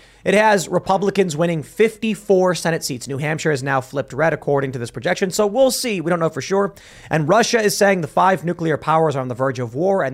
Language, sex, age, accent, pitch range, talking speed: English, male, 30-49, American, 145-200 Hz, 235 wpm